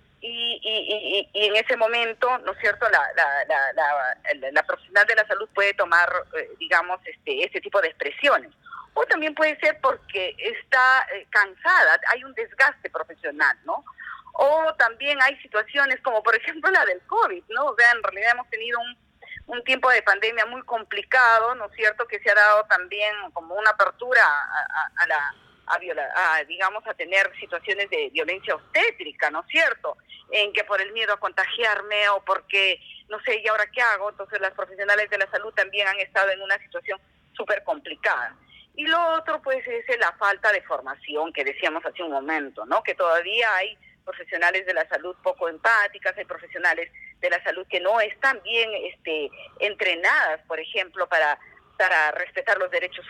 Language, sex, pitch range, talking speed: Spanish, female, 195-270 Hz, 175 wpm